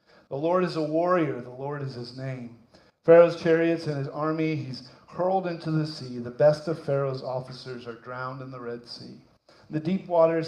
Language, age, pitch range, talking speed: English, 50-69, 125-155 Hz, 195 wpm